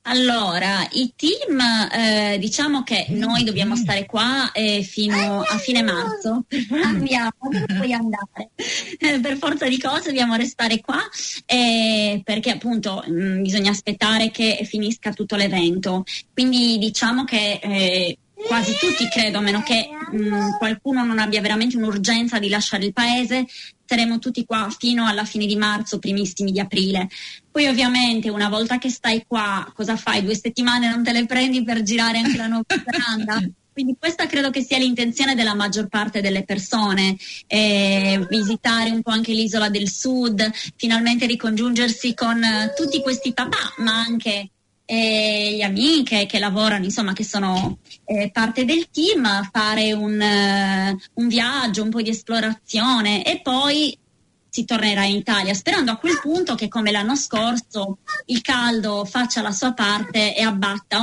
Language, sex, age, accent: Italian, female, 20-39, native